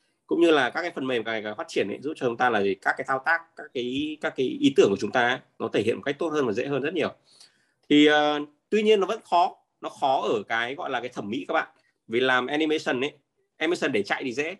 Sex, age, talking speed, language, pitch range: male, 20-39, 300 wpm, Vietnamese, 120-165 Hz